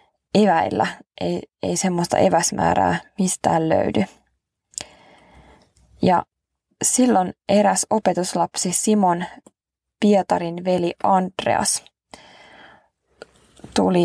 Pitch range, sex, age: 170-200 Hz, female, 20-39